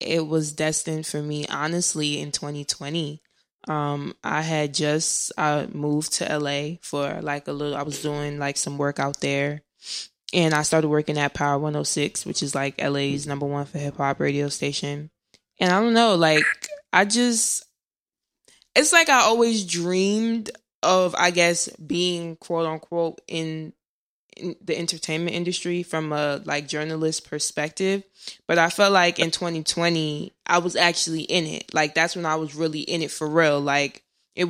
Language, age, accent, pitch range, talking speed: English, 20-39, American, 150-170 Hz, 165 wpm